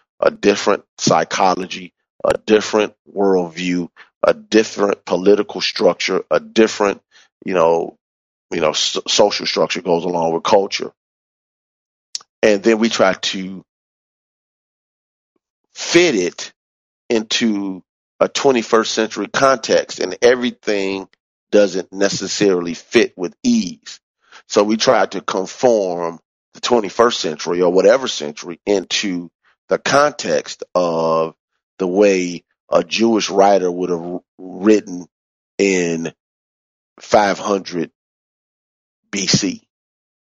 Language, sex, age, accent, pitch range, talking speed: English, male, 40-59, American, 85-105 Hz, 105 wpm